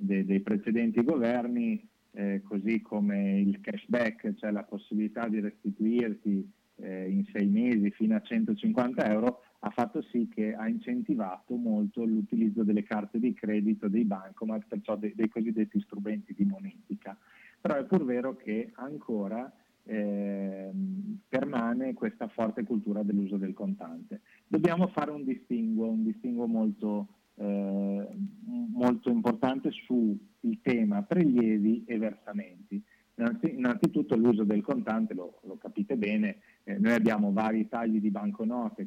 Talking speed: 135 wpm